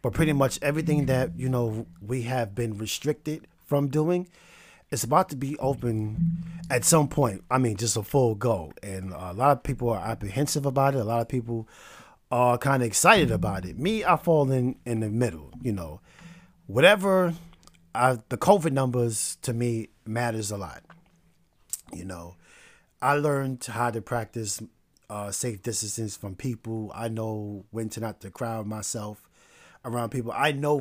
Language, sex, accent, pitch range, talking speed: English, male, American, 110-140 Hz, 170 wpm